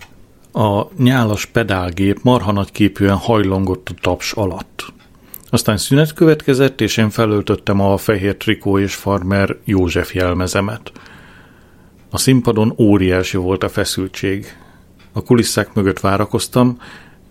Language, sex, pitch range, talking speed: Hungarian, male, 95-115 Hz, 105 wpm